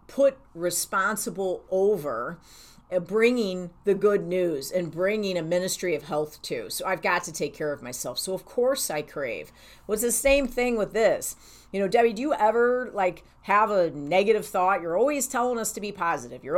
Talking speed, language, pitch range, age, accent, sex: 190 wpm, English, 180-230 Hz, 40-59, American, female